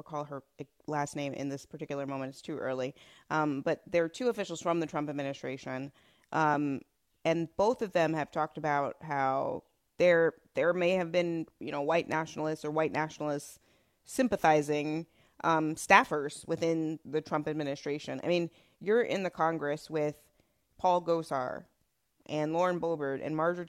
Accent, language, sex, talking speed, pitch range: American, English, female, 160 wpm, 150-175 Hz